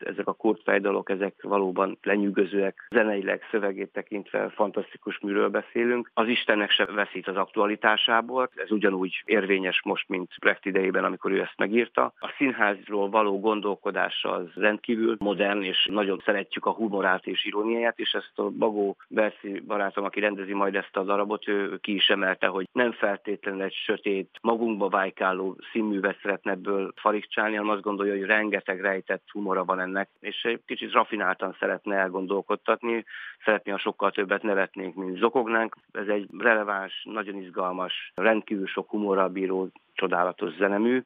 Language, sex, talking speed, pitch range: Hungarian, male, 140 wpm, 95-110 Hz